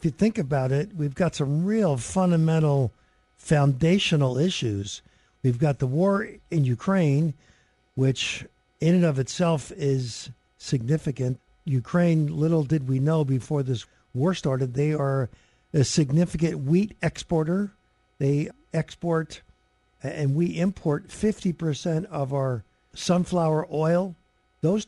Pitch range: 135-170 Hz